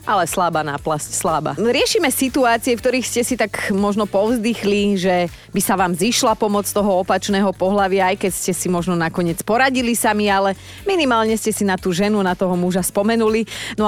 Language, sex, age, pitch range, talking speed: Slovak, female, 30-49, 180-235 Hz, 180 wpm